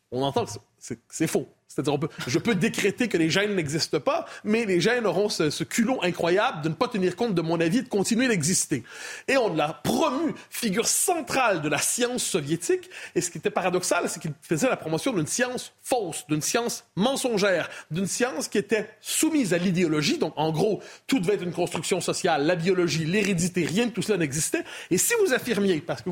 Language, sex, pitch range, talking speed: French, male, 170-235 Hz, 215 wpm